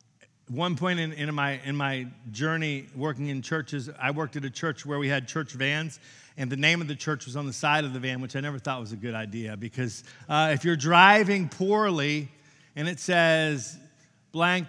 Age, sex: 40-59, male